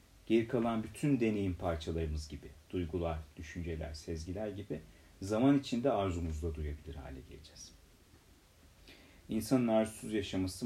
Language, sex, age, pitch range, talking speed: Turkish, male, 40-59, 85-115 Hz, 105 wpm